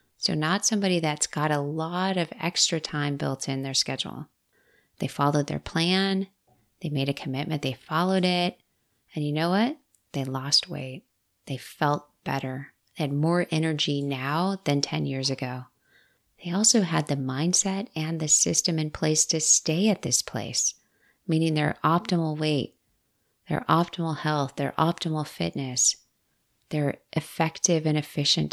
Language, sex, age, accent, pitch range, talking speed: English, female, 30-49, American, 140-170 Hz, 155 wpm